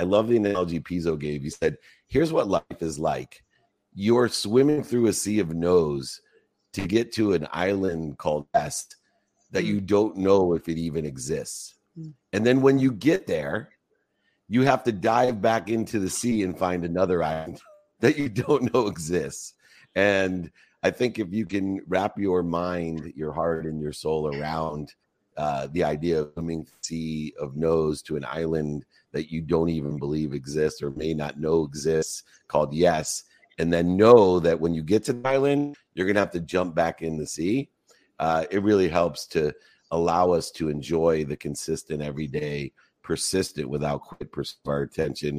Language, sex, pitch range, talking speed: English, male, 75-100 Hz, 175 wpm